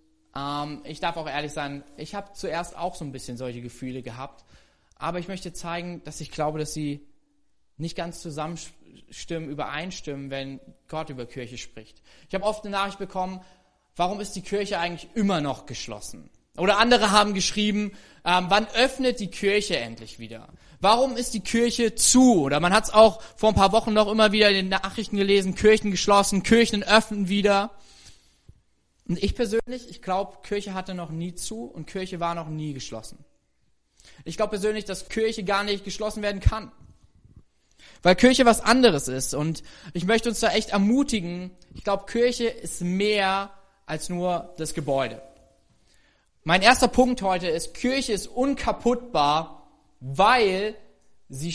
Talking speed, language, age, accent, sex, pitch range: 165 wpm, German, 20-39, German, male, 155-215 Hz